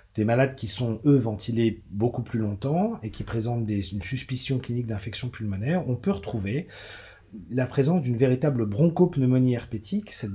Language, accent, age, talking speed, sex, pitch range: French, French, 40-59, 155 wpm, male, 105-135 Hz